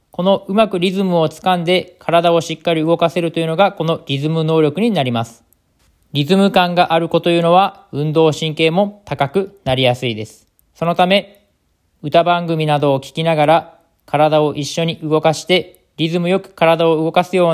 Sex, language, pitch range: male, Japanese, 145-185 Hz